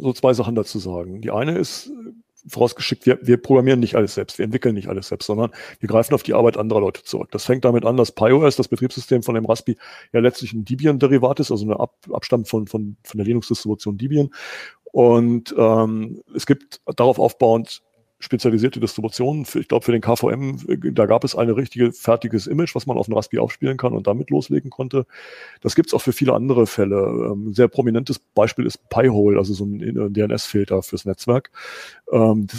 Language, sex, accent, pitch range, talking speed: German, male, German, 110-130 Hz, 195 wpm